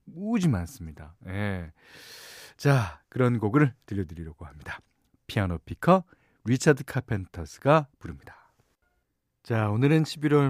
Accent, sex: native, male